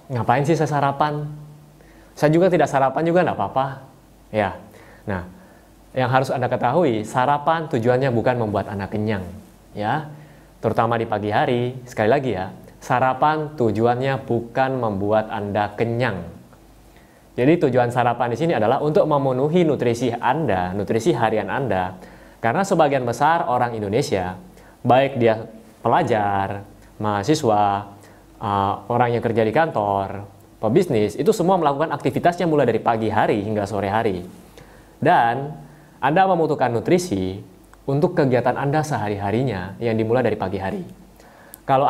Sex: male